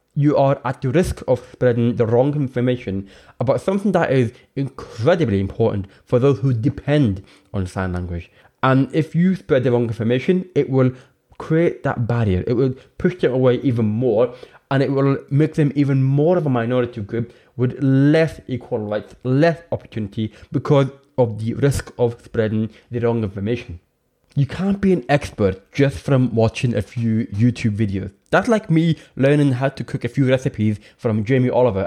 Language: English